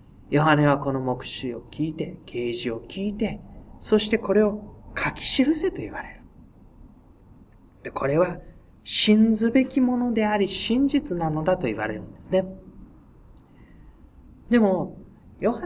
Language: Japanese